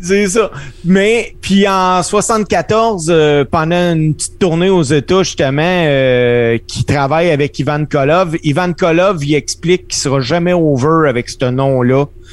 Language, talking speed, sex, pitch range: French, 150 wpm, male, 135-175 Hz